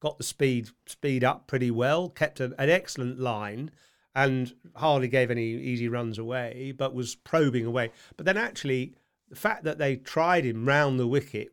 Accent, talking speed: British, 180 wpm